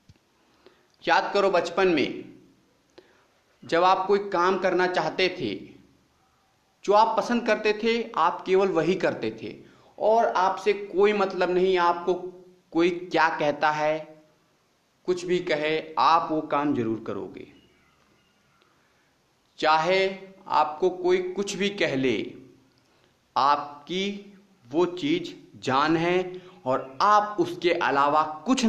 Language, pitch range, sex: Hindi, 155-210 Hz, male